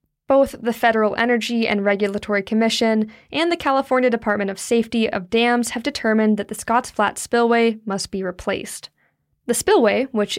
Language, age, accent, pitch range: English, 10-29, American, 205-245 Hz